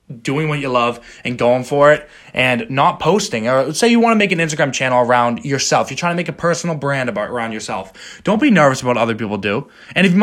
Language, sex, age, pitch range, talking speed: English, male, 20-39, 120-170 Hz, 250 wpm